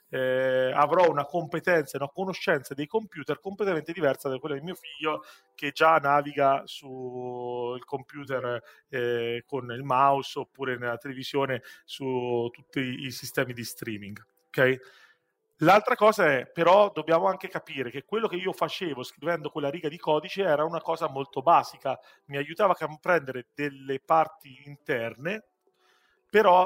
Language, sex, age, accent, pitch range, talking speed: Italian, male, 40-59, native, 135-170 Hz, 150 wpm